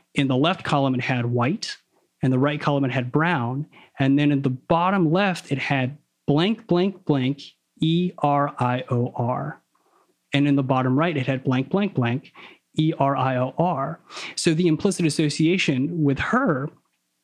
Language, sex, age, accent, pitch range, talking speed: English, male, 30-49, American, 130-165 Hz, 150 wpm